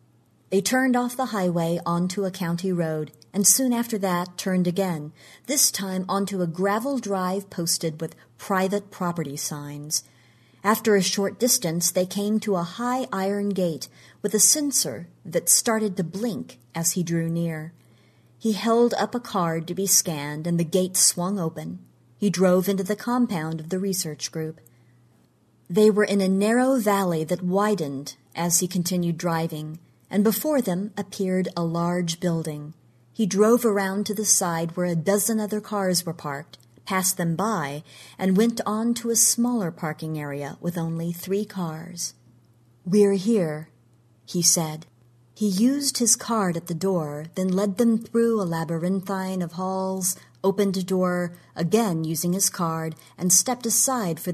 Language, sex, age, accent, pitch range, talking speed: English, female, 40-59, American, 160-205 Hz, 160 wpm